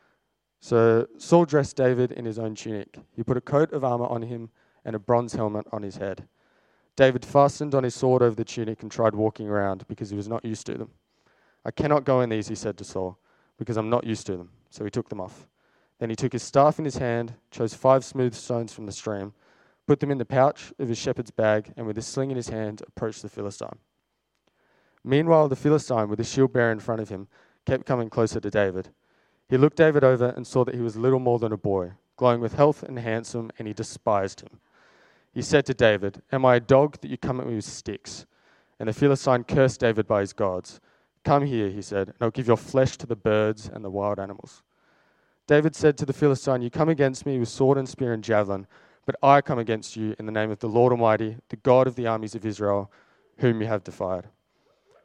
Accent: Australian